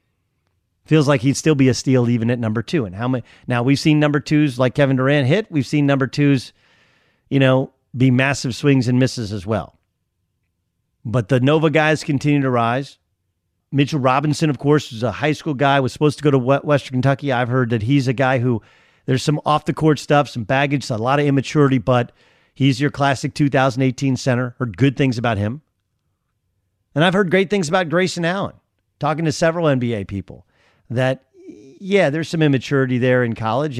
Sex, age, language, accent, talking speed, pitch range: male, 40-59, English, American, 190 wpm, 125-145 Hz